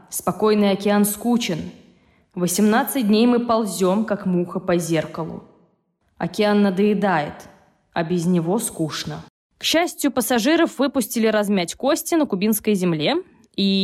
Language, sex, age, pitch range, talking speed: Russian, female, 20-39, 180-225 Hz, 115 wpm